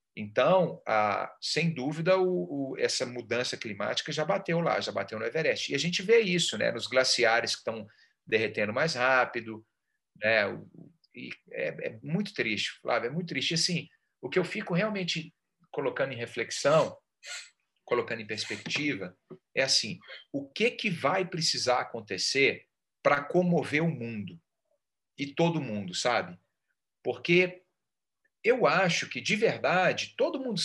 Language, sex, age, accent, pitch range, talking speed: Portuguese, male, 40-59, Brazilian, 125-185 Hz, 140 wpm